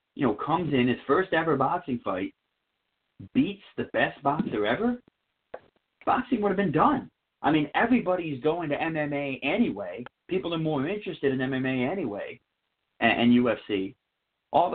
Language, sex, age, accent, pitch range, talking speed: English, male, 30-49, American, 110-145 Hz, 155 wpm